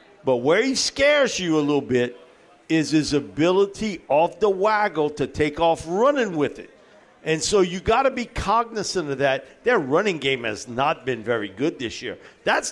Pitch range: 145-210 Hz